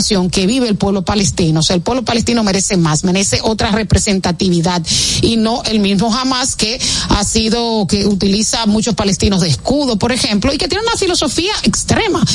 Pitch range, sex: 190-230 Hz, female